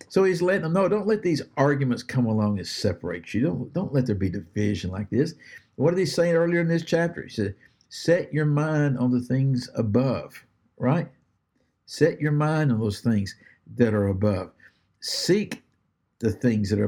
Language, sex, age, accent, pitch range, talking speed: English, male, 60-79, American, 105-145 Hz, 190 wpm